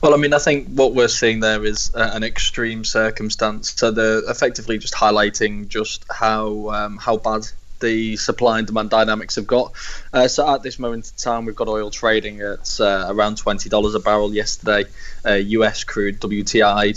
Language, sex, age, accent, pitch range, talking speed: English, male, 10-29, British, 105-115 Hz, 185 wpm